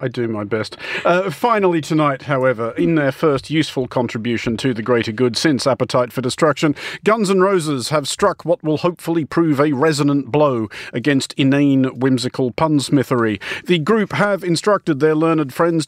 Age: 40-59